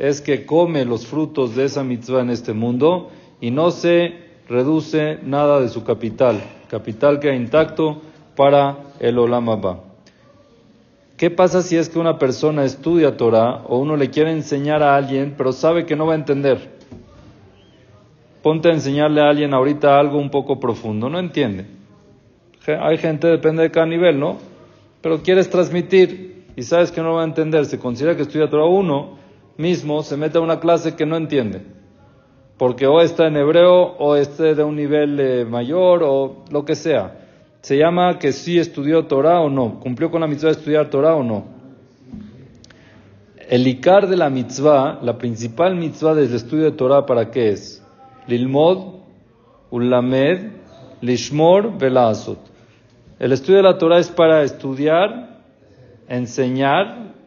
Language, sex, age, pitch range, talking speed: Spanish, male, 40-59, 125-160 Hz, 165 wpm